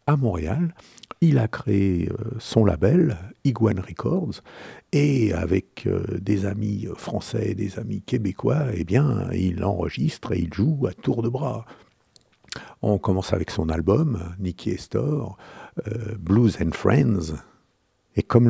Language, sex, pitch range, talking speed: French, male, 95-115 Hz, 150 wpm